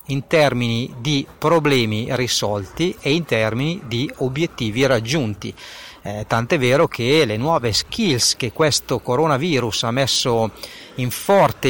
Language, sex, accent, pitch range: Italian, male, native, 115-155 Hz